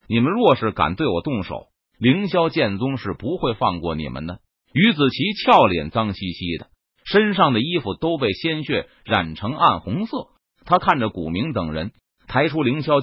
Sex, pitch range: male, 110-175 Hz